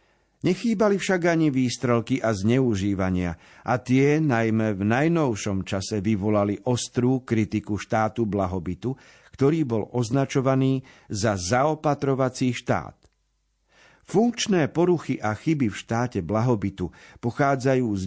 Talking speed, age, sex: 105 wpm, 50-69, male